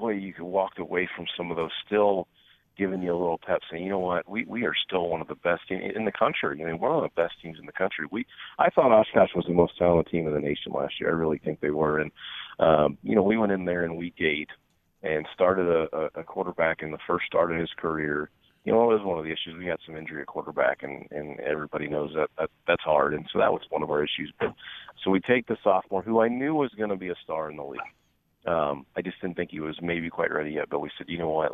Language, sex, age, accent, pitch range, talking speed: English, male, 40-59, American, 75-90 Hz, 290 wpm